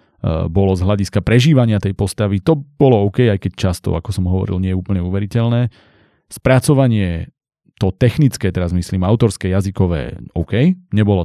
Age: 30-49